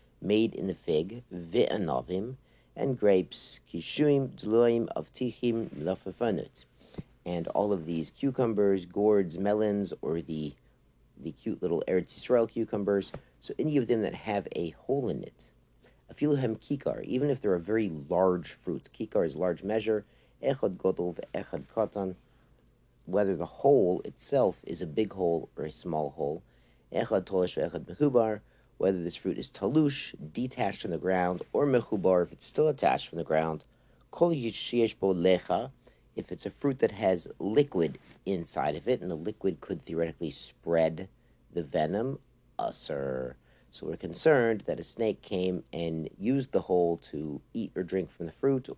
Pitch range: 85-115 Hz